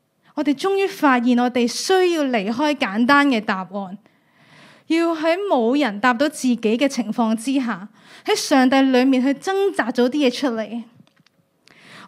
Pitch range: 235-335 Hz